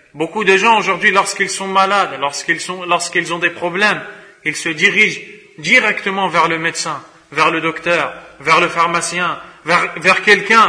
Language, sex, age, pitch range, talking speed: French, male, 30-49, 165-200 Hz, 165 wpm